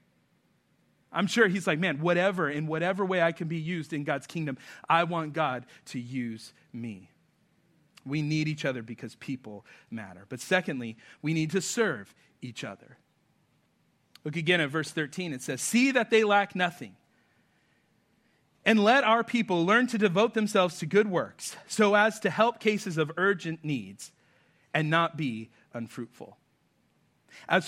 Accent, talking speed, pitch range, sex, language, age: American, 160 wpm, 150-200 Hz, male, English, 40-59